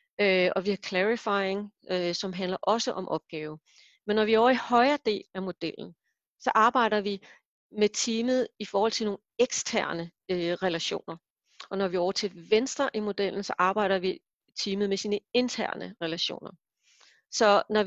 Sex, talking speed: female, 165 wpm